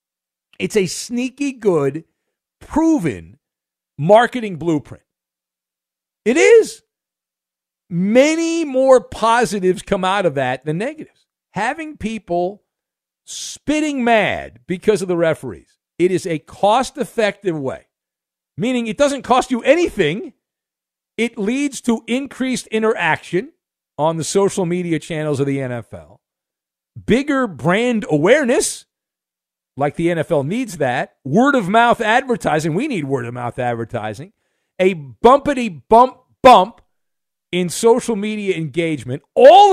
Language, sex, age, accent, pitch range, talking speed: English, male, 50-69, American, 155-240 Hz, 105 wpm